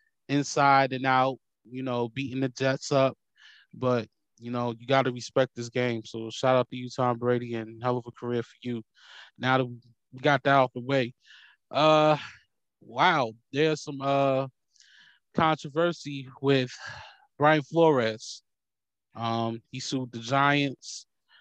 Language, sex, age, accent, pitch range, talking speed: English, male, 20-39, American, 120-140 Hz, 150 wpm